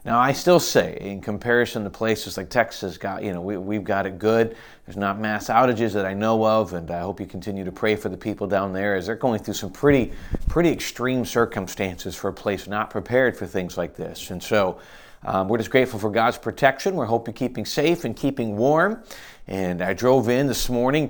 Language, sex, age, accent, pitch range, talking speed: English, male, 40-59, American, 100-135 Hz, 225 wpm